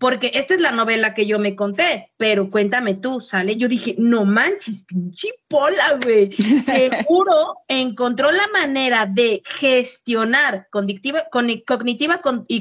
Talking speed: 140 wpm